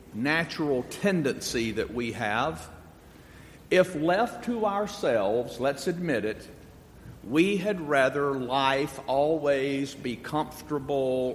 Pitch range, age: 135-190 Hz, 50-69